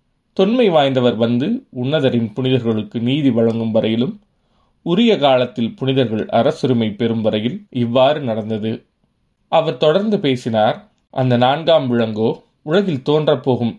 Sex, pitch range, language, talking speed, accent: male, 115-150 Hz, Tamil, 105 wpm, native